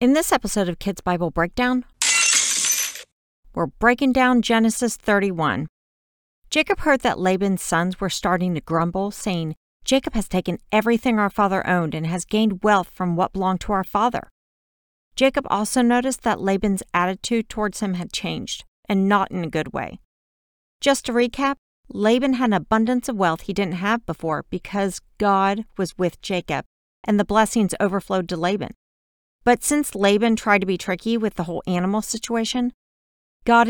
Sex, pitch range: female, 185-235 Hz